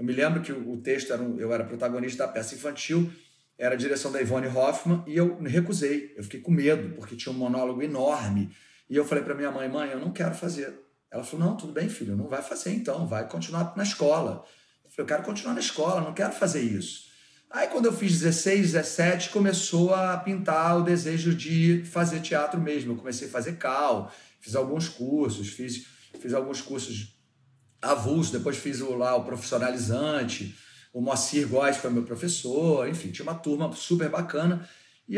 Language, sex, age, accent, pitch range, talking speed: Portuguese, male, 30-49, Brazilian, 130-175 Hz, 195 wpm